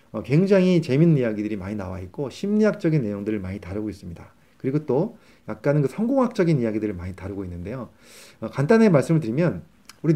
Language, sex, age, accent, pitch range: Korean, male, 30-49, native, 110-170 Hz